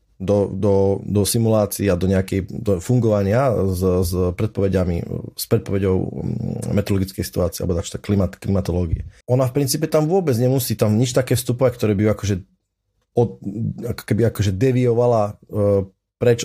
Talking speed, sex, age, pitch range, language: 130 wpm, male, 30-49, 100-120 Hz, Slovak